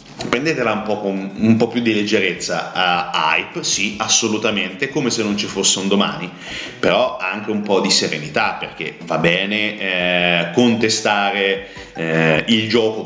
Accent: native